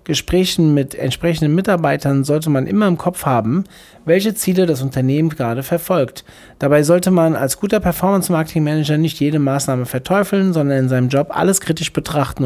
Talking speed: 160 wpm